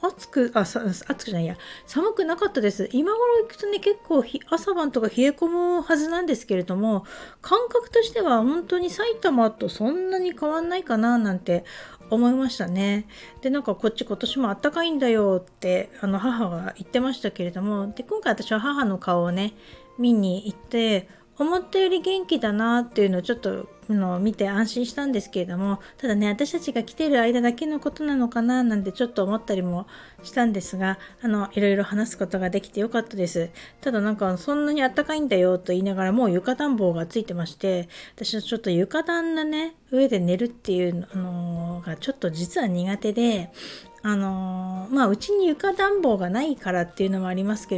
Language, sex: Japanese, female